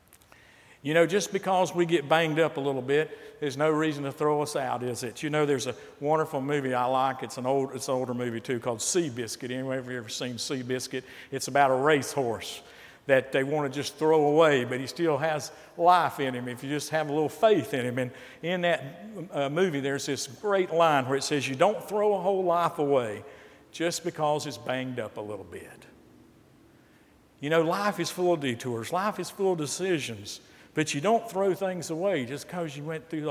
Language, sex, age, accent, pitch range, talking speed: English, male, 50-69, American, 130-180 Hz, 220 wpm